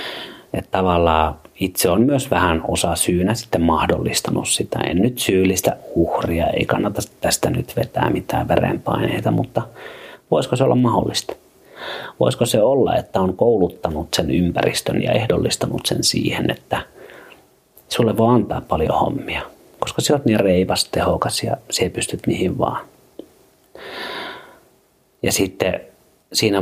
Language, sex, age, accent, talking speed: Finnish, male, 30-49, native, 135 wpm